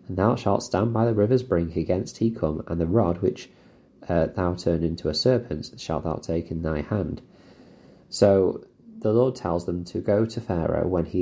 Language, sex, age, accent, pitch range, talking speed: English, male, 30-49, British, 85-100 Hz, 205 wpm